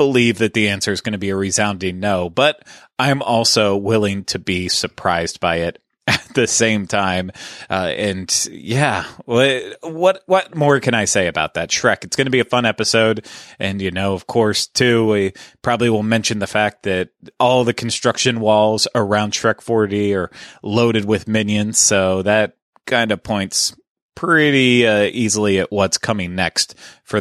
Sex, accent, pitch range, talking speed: male, American, 95-120 Hz, 175 wpm